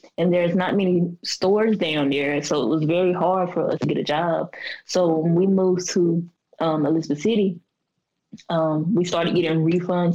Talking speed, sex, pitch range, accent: 185 wpm, female, 160-185 Hz, American